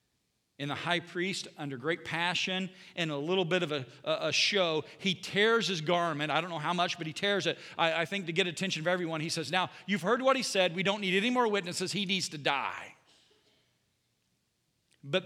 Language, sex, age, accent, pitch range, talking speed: English, male, 40-59, American, 160-220 Hz, 215 wpm